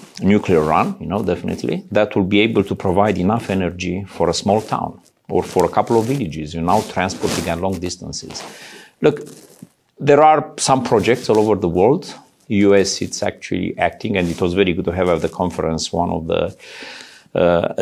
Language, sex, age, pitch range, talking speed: English, male, 50-69, 85-100 Hz, 190 wpm